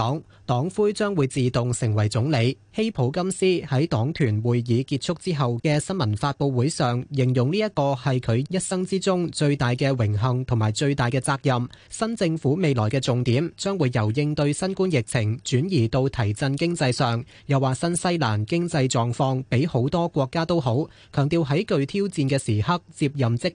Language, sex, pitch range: Chinese, male, 125-165 Hz